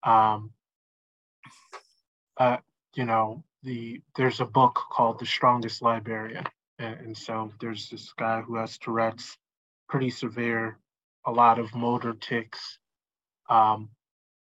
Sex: male